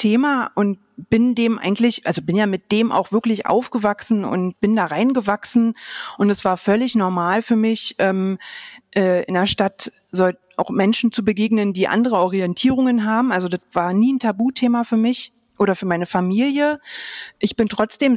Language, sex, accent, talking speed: German, female, German, 175 wpm